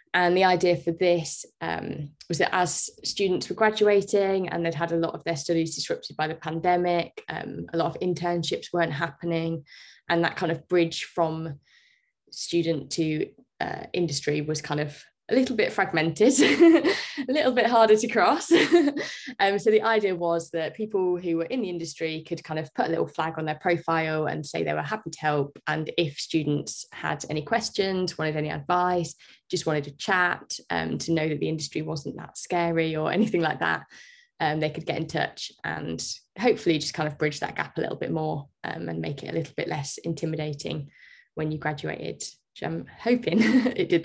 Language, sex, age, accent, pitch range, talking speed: English, female, 20-39, British, 155-185 Hz, 200 wpm